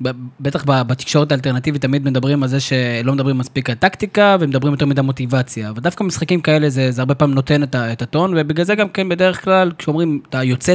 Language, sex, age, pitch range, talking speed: Hebrew, male, 20-39, 135-170 Hz, 200 wpm